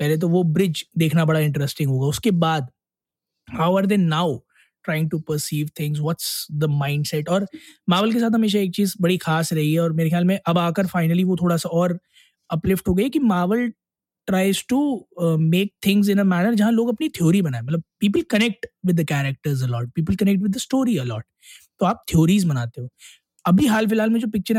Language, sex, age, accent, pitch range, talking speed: Hindi, male, 20-39, native, 155-195 Hz, 195 wpm